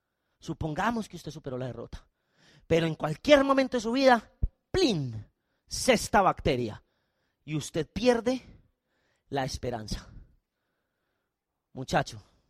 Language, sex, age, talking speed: Spanish, male, 30-49, 105 wpm